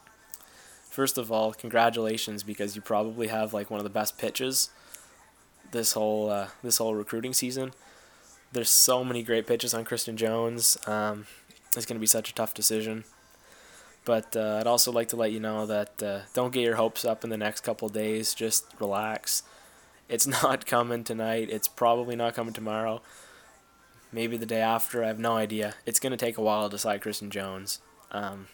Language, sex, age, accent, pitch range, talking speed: English, male, 10-29, American, 105-120 Hz, 190 wpm